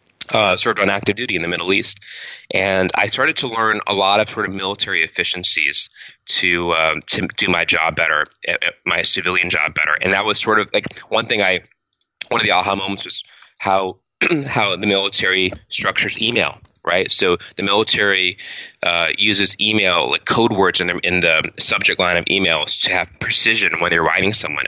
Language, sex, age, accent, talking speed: English, male, 20-39, American, 195 wpm